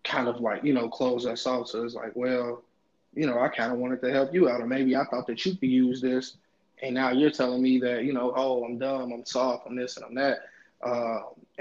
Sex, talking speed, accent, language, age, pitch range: male, 260 wpm, American, English, 20-39, 115-130 Hz